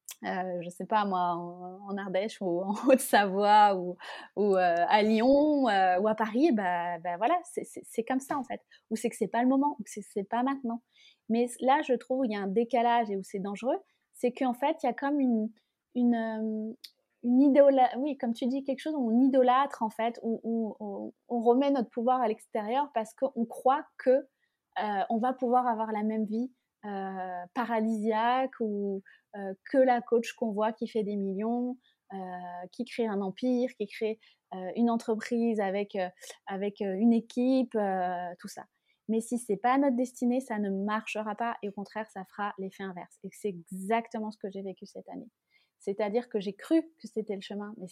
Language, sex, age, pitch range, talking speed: French, female, 20-39, 195-245 Hz, 210 wpm